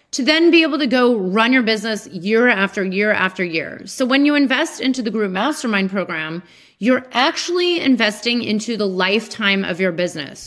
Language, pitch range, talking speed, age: English, 190-260 Hz, 185 wpm, 30-49